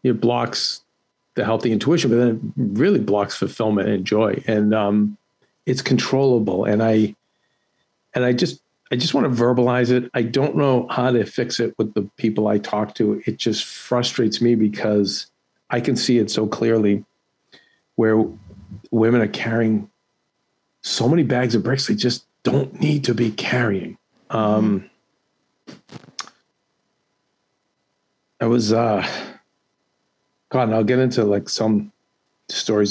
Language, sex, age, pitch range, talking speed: English, male, 50-69, 105-125 Hz, 140 wpm